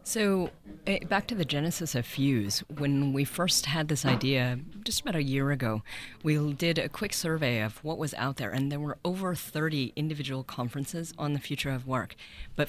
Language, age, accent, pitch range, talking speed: English, 30-49, American, 135-155 Hz, 195 wpm